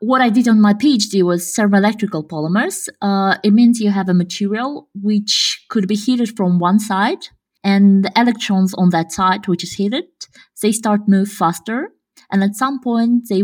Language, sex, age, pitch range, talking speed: Russian, female, 20-39, 185-235 Hz, 190 wpm